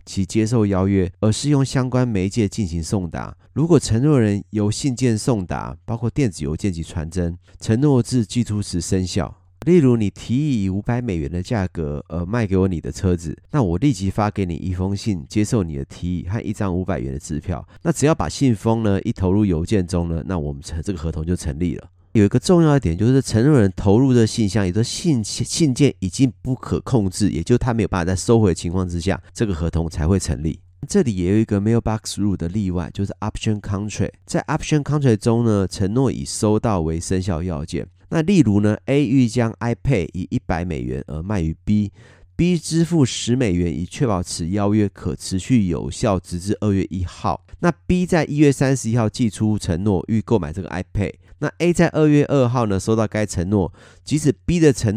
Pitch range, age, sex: 90-120 Hz, 30-49, male